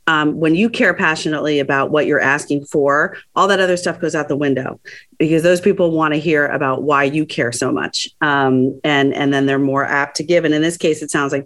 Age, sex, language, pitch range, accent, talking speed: 30-49, female, English, 140-175 Hz, American, 240 wpm